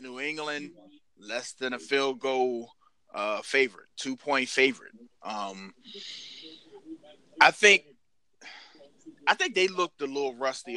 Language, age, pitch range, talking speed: English, 20-39, 125-155 Hz, 115 wpm